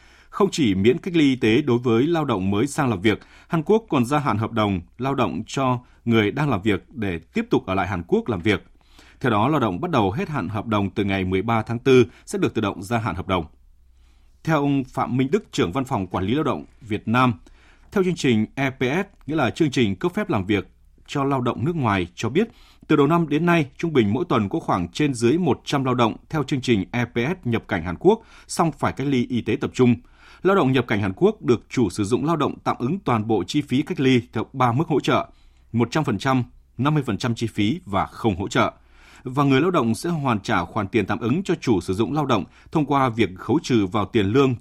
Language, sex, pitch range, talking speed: Vietnamese, male, 105-140 Hz, 250 wpm